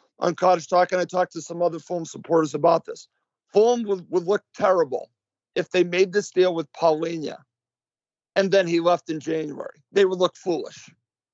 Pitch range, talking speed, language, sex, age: 170-210 Hz, 185 wpm, English, male, 50-69